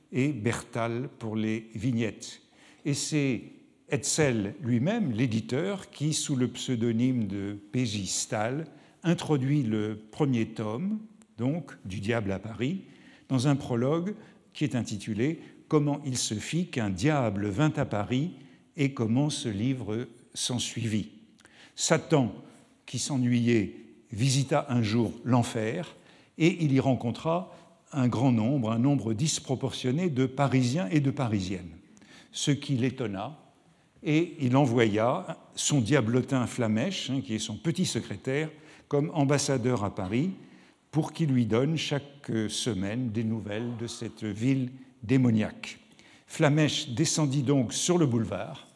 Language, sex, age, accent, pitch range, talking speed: French, male, 60-79, French, 115-145 Hz, 135 wpm